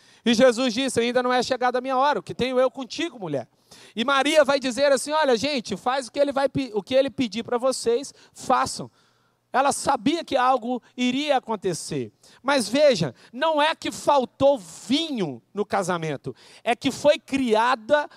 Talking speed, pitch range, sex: 170 wpm, 220-280 Hz, male